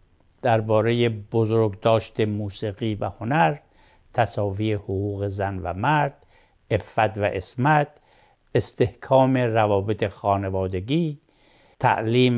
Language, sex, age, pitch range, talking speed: Persian, male, 60-79, 110-140 Hz, 80 wpm